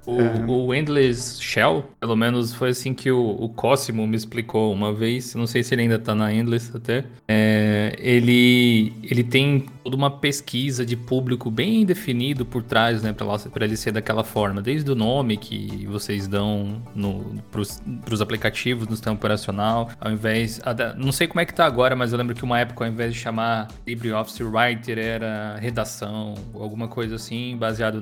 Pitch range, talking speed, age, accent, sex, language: 110-130 Hz, 180 wpm, 20-39, Brazilian, male, Portuguese